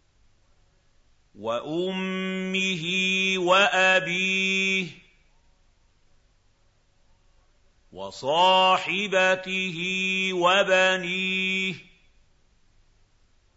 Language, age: Arabic, 50-69